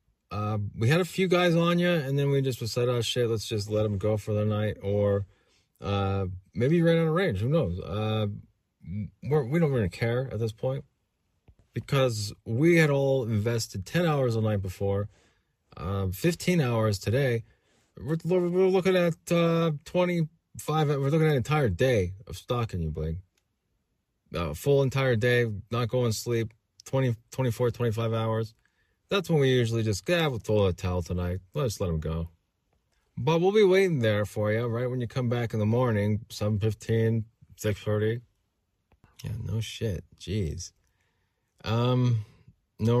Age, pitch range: 20-39, 100-130 Hz